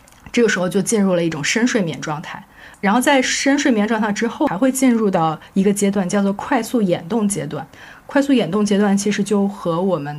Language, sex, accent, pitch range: Chinese, female, native, 175-215 Hz